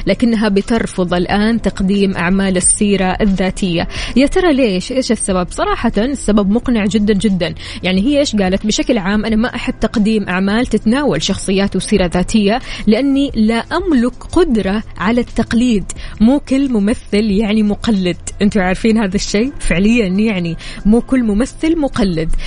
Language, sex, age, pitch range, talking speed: Arabic, female, 20-39, 190-240 Hz, 140 wpm